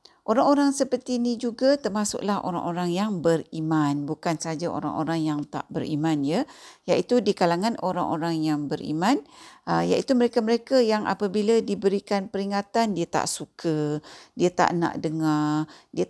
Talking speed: 130 wpm